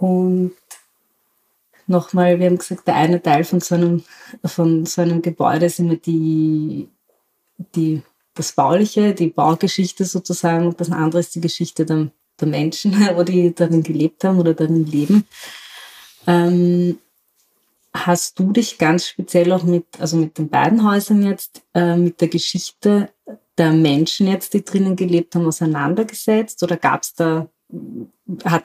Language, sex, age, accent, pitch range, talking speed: German, female, 30-49, German, 165-185 Hz, 140 wpm